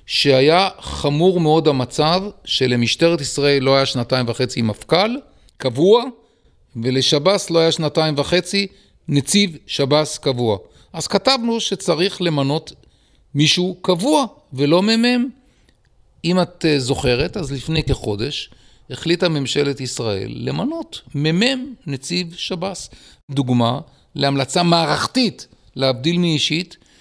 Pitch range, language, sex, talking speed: 125-175 Hz, Hebrew, male, 105 wpm